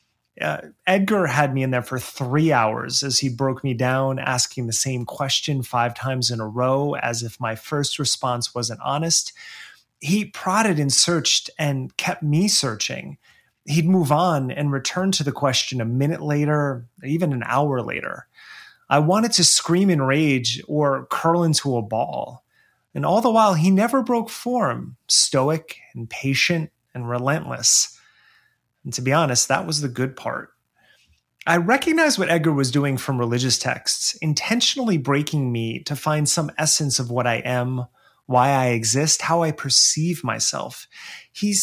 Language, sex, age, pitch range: English, male, 30-49, 125-160 Hz